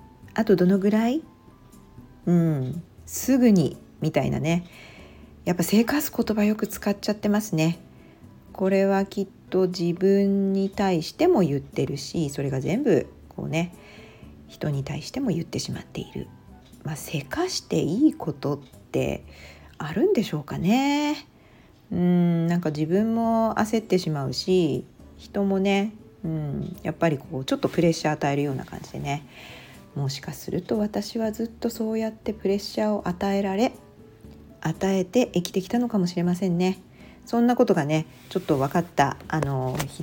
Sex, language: female, Japanese